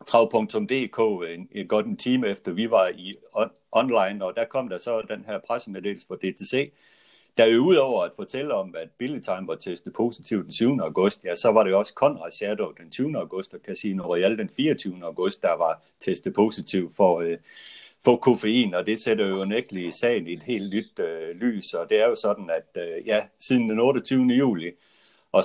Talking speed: 200 wpm